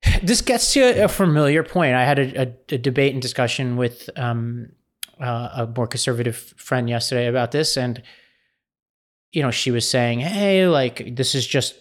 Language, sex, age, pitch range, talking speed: English, male, 30-49, 120-145 Hz, 180 wpm